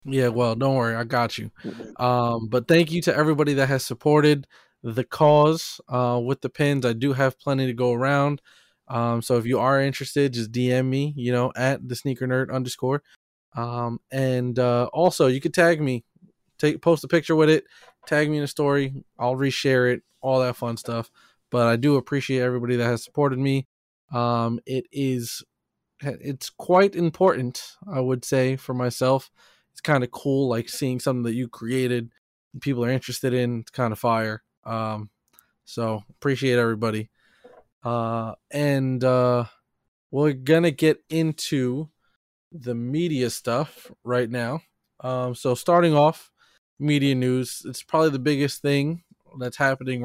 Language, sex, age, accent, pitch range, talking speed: English, male, 20-39, American, 120-140 Hz, 170 wpm